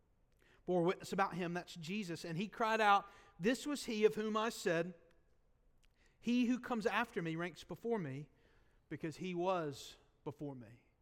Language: English